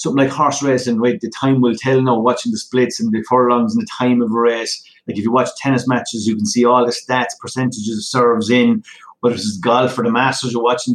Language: English